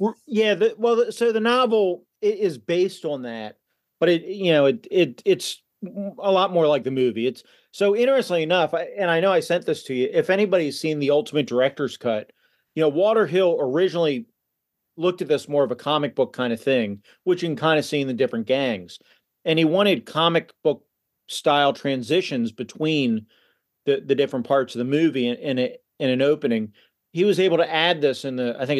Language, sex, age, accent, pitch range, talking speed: English, male, 40-59, American, 135-185 Hz, 205 wpm